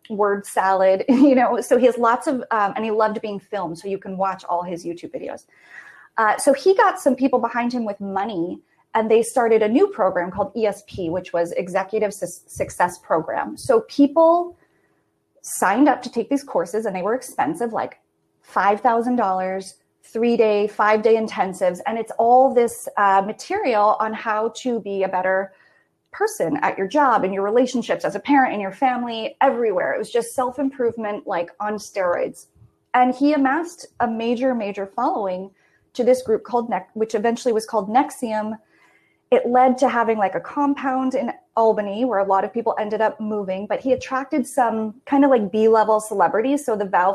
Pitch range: 200-260 Hz